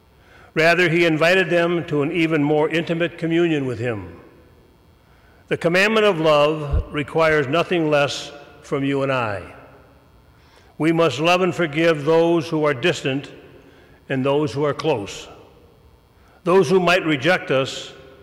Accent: American